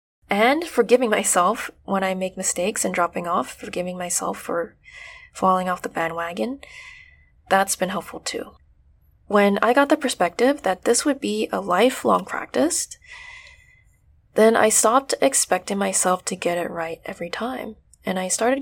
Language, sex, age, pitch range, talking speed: English, female, 20-39, 180-250 Hz, 150 wpm